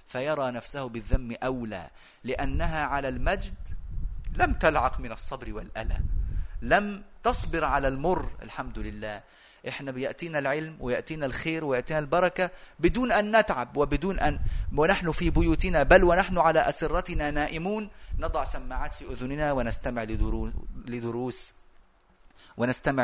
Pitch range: 125-160 Hz